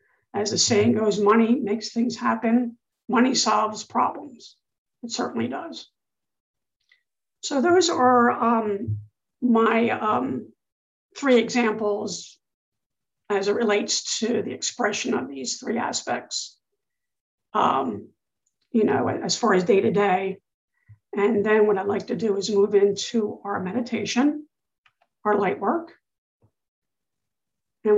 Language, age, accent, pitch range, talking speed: English, 50-69, American, 205-240 Hz, 120 wpm